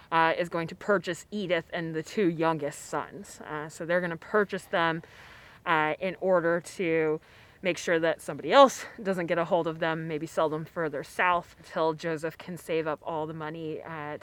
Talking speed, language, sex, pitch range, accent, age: 200 wpm, English, female, 160-195 Hz, American, 20-39